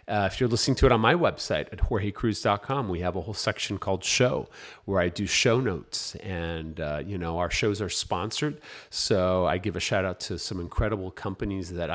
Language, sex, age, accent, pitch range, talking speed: English, male, 40-59, American, 90-115 Hz, 210 wpm